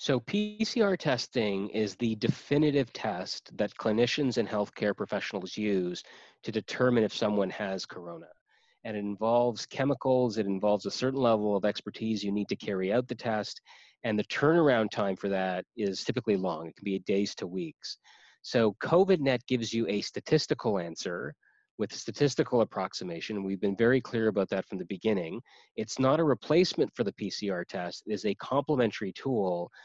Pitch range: 105-130 Hz